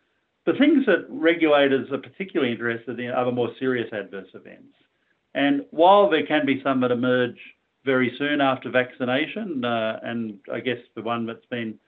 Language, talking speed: English, 170 wpm